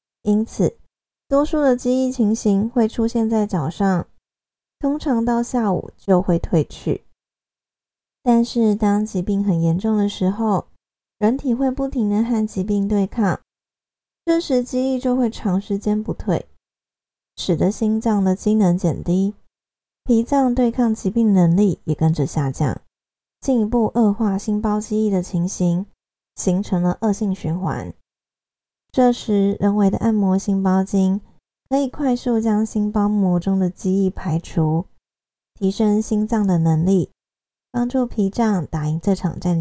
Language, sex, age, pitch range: Chinese, female, 20-39, 185-230 Hz